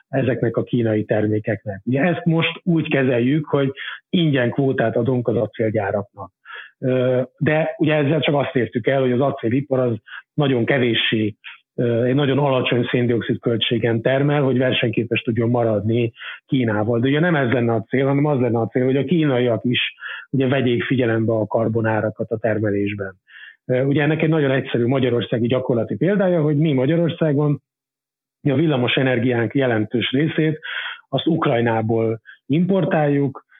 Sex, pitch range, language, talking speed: male, 115-140 Hz, Hungarian, 140 wpm